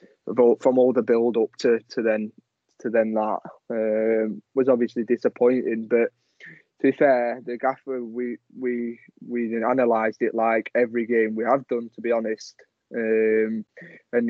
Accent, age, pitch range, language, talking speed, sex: British, 20-39, 115-130 Hz, English, 160 wpm, male